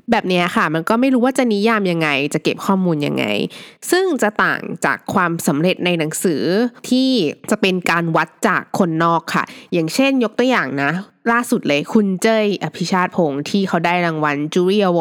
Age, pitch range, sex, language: 20-39, 170-235 Hz, female, Thai